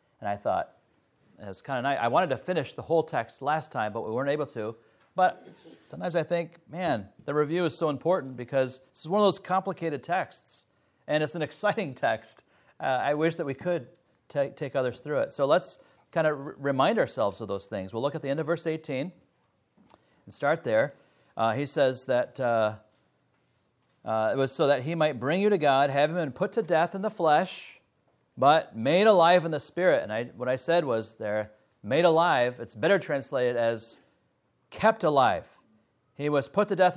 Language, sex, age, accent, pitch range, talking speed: English, male, 40-59, American, 125-175 Hz, 205 wpm